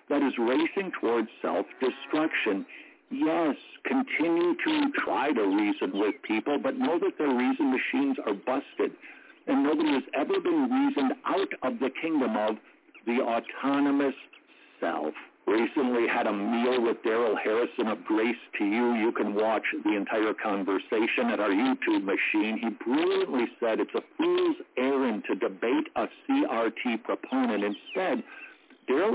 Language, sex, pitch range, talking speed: English, male, 260-335 Hz, 145 wpm